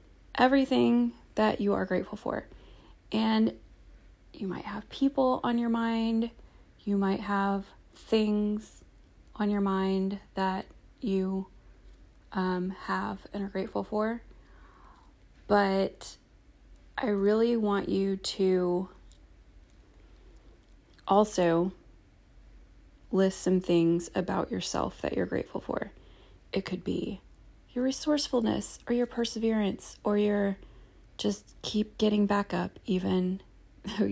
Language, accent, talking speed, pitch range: English, American, 110 wpm, 180-215 Hz